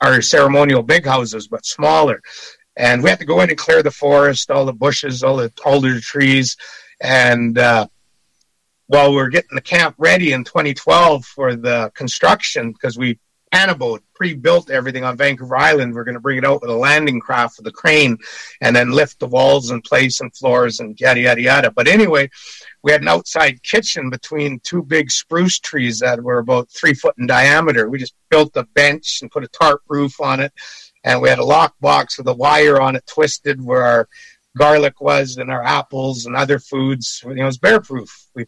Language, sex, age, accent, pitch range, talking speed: English, male, 60-79, American, 130-165 Hz, 200 wpm